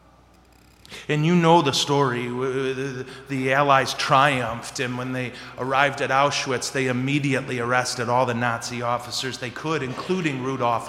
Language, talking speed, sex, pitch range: English, 140 wpm, male, 130-160 Hz